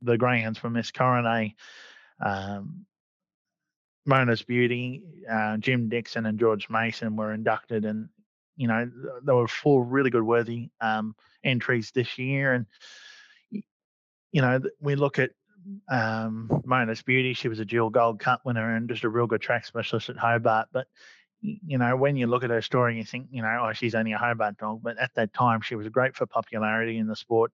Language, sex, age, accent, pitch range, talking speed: English, male, 20-39, Australian, 110-125 Hz, 190 wpm